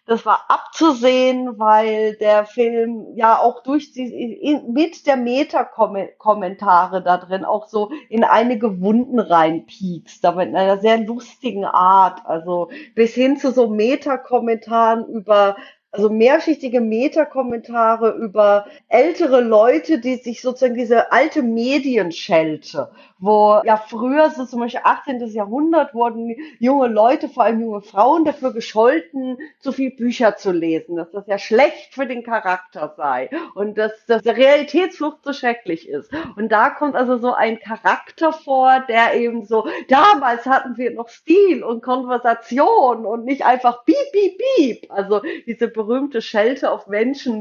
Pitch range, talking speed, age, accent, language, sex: 215-270 Hz, 145 wpm, 40-59, German, German, female